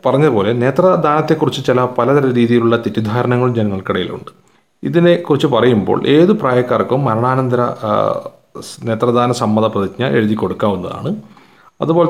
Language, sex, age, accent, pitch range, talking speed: Malayalam, male, 30-49, native, 105-150 Hz, 95 wpm